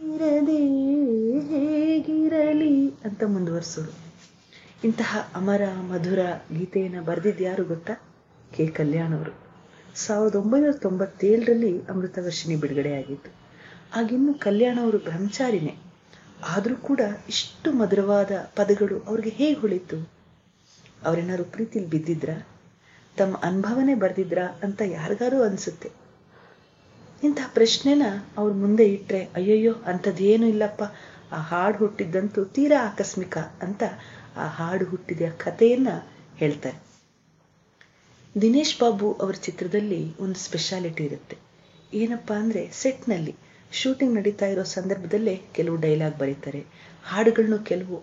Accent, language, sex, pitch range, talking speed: native, Kannada, female, 170-225 Hz, 95 wpm